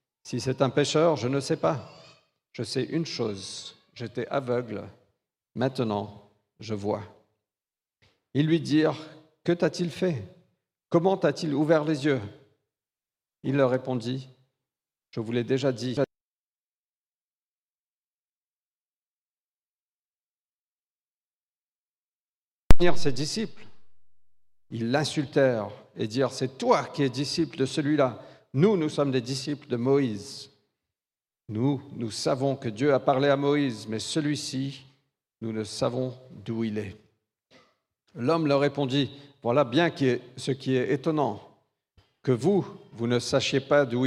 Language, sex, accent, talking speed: French, male, French, 125 wpm